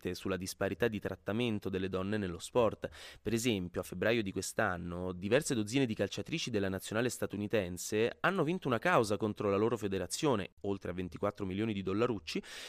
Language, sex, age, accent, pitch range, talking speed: Italian, male, 20-39, native, 95-135 Hz, 165 wpm